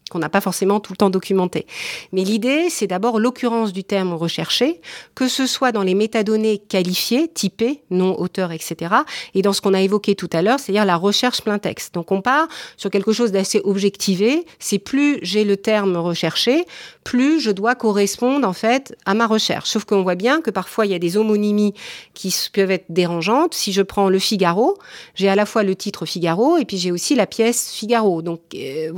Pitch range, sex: 180-230 Hz, female